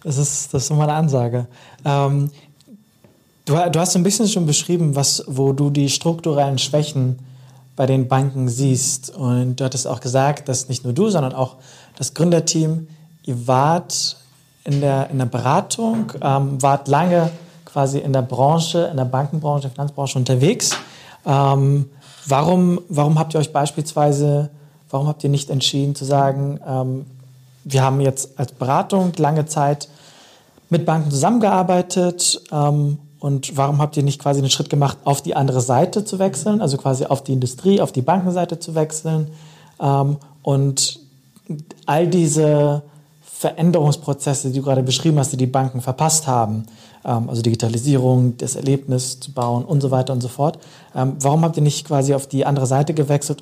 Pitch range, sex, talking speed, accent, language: 135-155 Hz, male, 160 wpm, German, German